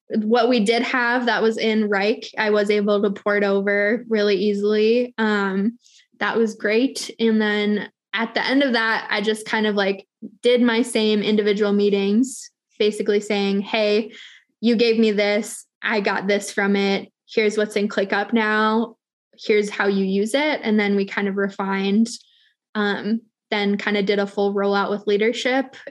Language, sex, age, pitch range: English, female, 10-29, 205-230 Hz